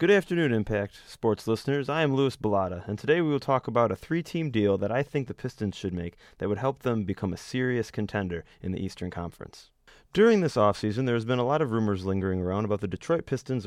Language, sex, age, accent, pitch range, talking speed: English, male, 30-49, American, 100-130 Hz, 235 wpm